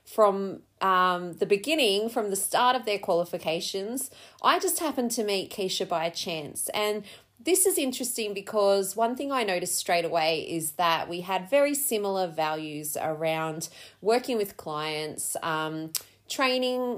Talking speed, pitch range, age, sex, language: 150 wpm, 170-235 Hz, 30-49, female, English